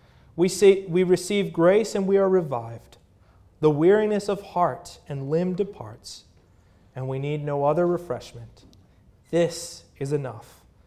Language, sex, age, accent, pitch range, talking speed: English, male, 30-49, American, 100-145 Hz, 140 wpm